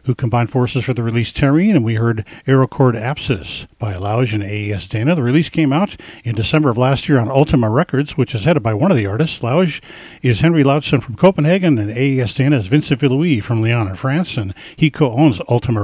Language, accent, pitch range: English, American, 115-150 Hz